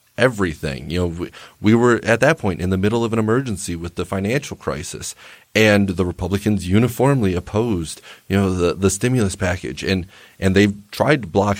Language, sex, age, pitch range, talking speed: English, male, 30-49, 90-110 Hz, 185 wpm